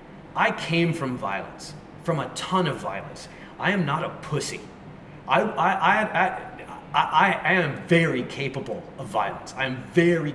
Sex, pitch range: male, 135-175 Hz